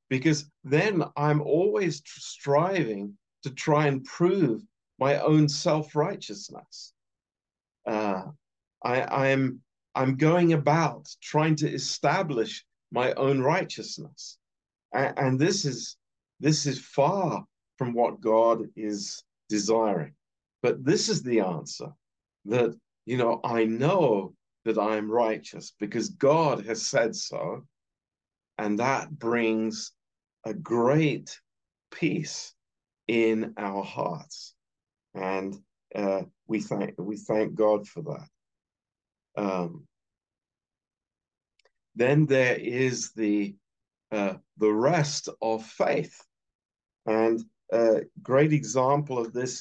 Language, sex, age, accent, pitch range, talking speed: Romanian, male, 40-59, British, 105-145 Hz, 105 wpm